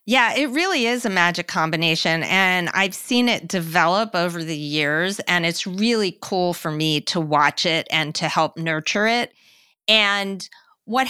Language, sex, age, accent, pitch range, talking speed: English, female, 30-49, American, 175-220 Hz, 170 wpm